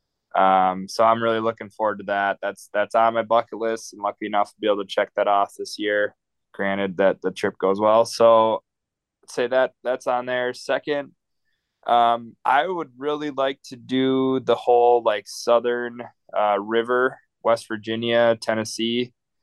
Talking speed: 175 wpm